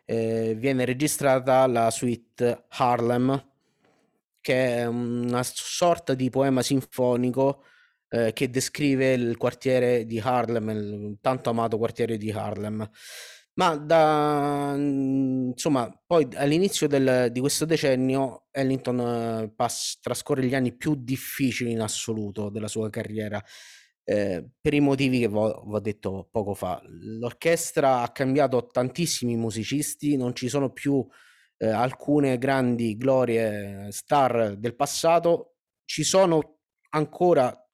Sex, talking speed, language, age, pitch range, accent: male, 120 wpm, Italian, 20-39, 115-135 Hz, native